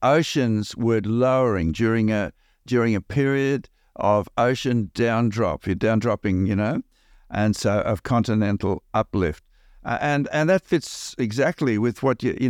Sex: male